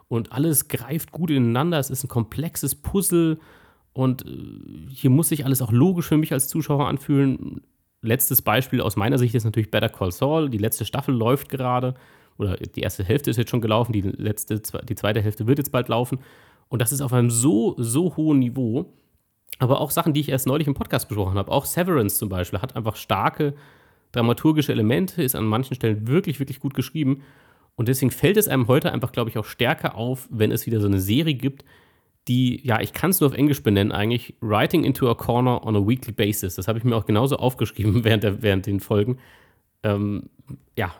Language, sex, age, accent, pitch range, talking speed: German, male, 30-49, German, 110-145 Hz, 205 wpm